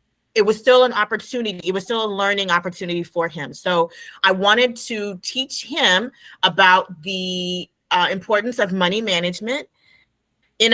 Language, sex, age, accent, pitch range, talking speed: English, female, 30-49, American, 175-225 Hz, 150 wpm